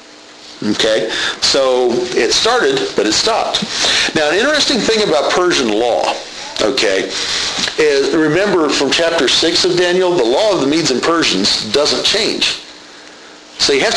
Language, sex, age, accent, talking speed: English, male, 50-69, American, 145 wpm